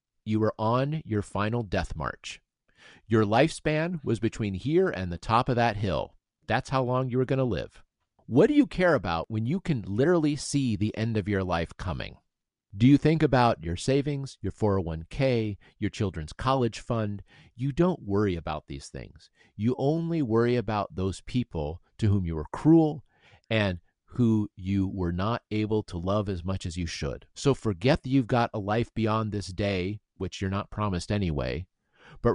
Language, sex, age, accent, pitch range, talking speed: English, male, 40-59, American, 95-125 Hz, 185 wpm